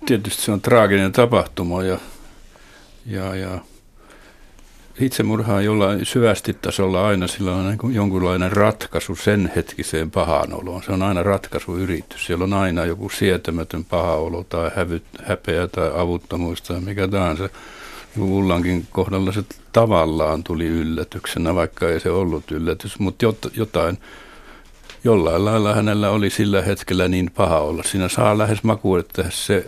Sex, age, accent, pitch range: male, 60-79, native, 85-100 Hz